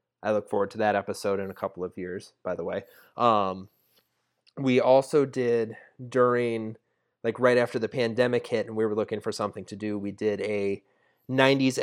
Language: English